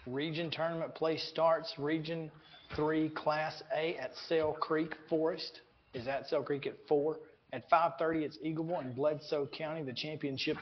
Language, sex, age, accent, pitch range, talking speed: English, male, 40-59, American, 140-175 Hz, 155 wpm